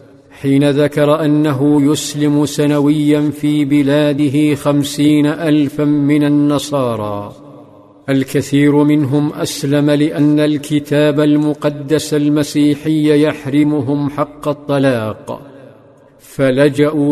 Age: 50-69